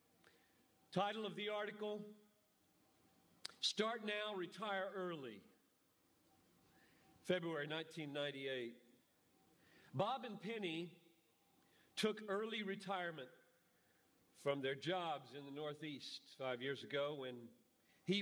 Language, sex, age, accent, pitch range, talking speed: English, male, 50-69, American, 175-245 Hz, 90 wpm